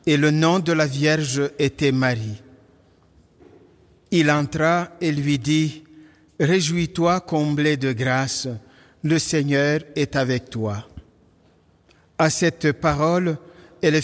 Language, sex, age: French, male, 50-69